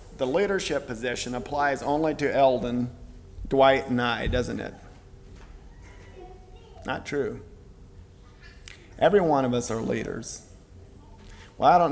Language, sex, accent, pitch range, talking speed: English, male, American, 100-155 Hz, 115 wpm